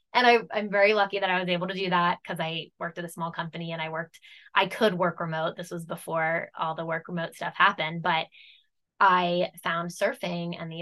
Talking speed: 220 wpm